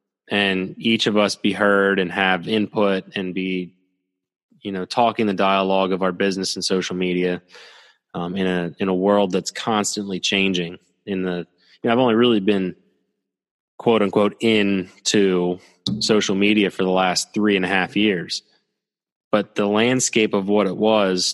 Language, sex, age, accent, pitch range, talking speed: English, male, 20-39, American, 95-105 Hz, 165 wpm